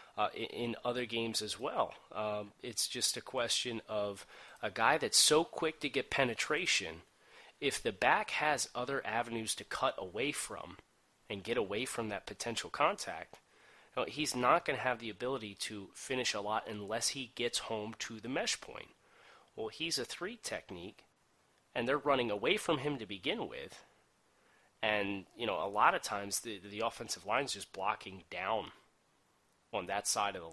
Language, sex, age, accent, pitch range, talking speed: English, male, 30-49, American, 105-120 Hz, 180 wpm